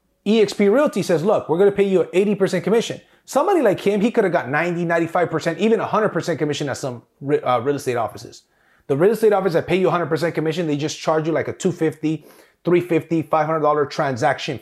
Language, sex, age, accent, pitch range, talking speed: English, male, 30-49, American, 150-205 Hz, 205 wpm